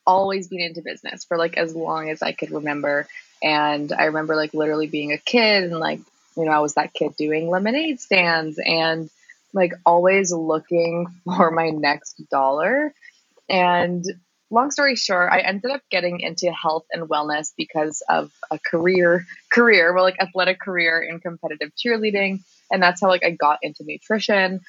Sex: female